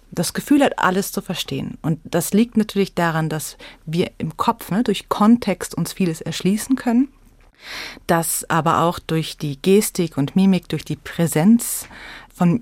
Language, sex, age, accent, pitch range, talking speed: German, female, 30-49, German, 170-225 Hz, 160 wpm